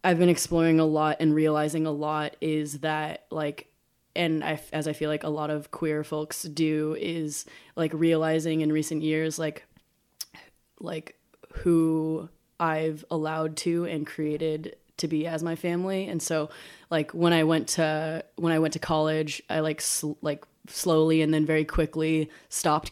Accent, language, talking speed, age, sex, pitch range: American, English, 170 wpm, 20-39, female, 155-170 Hz